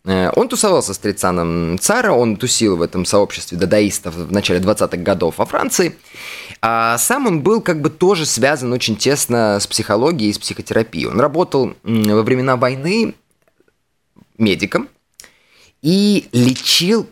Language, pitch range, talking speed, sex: Russian, 95-130 Hz, 140 wpm, male